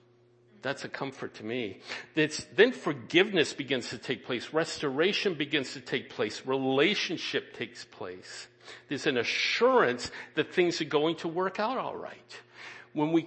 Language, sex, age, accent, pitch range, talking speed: English, male, 50-69, American, 130-190 Hz, 150 wpm